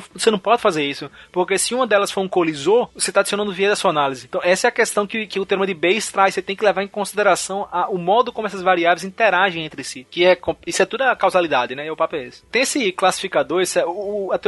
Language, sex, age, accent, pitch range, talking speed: Portuguese, male, 20-39, Brazilian, 170-215 Hz, 270 wpm